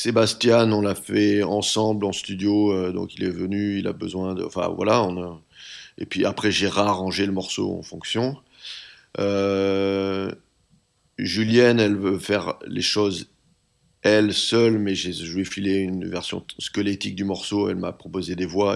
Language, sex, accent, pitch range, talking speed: French, male, French, 95-105 Hz, 175 wpm